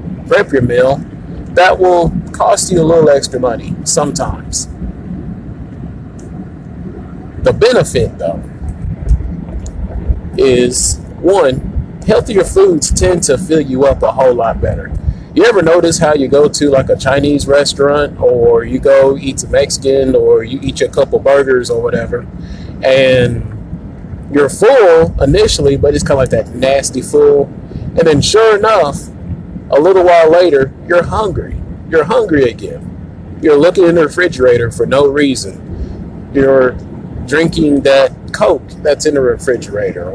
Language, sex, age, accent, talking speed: English, male, 30-49, American, 140 wpm